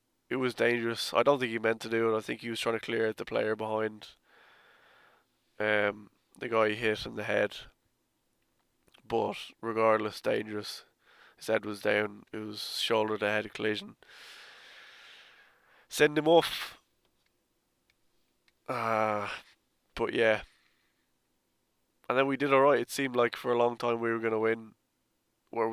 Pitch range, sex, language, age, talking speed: 110-120 Hz, male, English, 20-39, 155 wpm